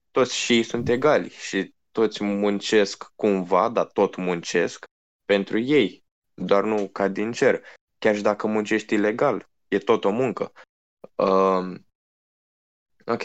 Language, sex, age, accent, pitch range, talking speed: Romanian, male, 20-39, native, 95-115 Hz, 130 wpm